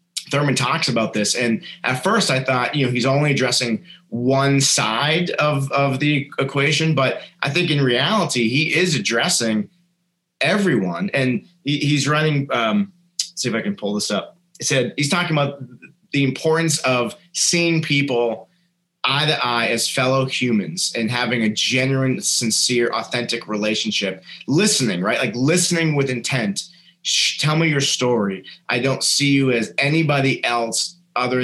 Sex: male